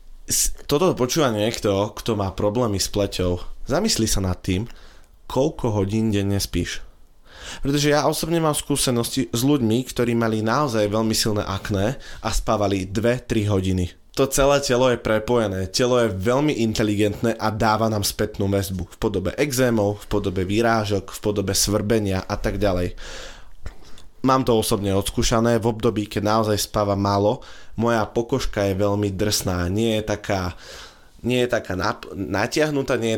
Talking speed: 155 wpm